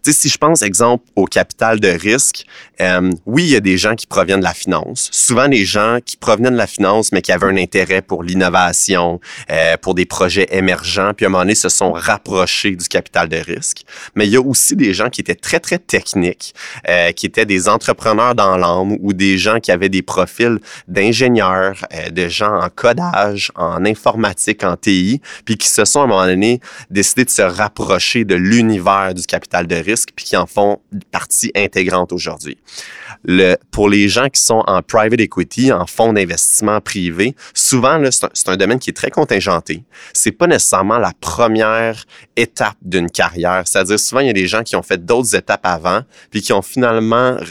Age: 30-49